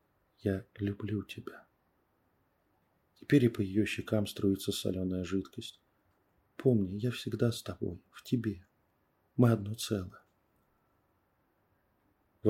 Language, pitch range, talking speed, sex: Russian, 95-115 Hz, 105 wpm, male